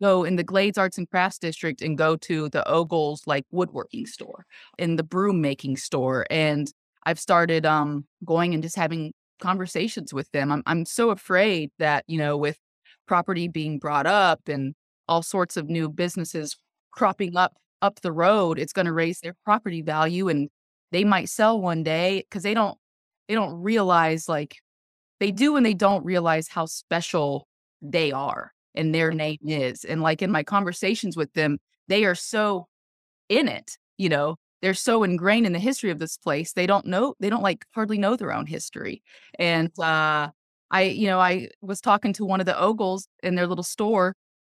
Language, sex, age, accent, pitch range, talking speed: English, female, 20-39, American, 160-200 Hz, 190 wpm